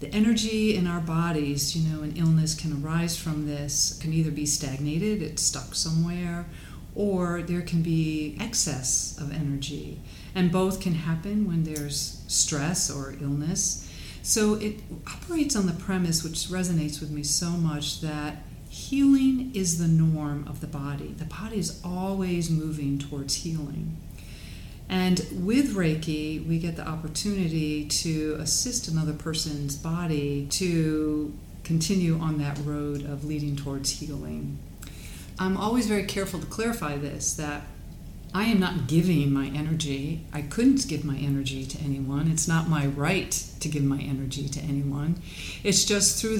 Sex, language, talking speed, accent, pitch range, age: female, English, 155 wpm, American, 145-175 Hz, 40-59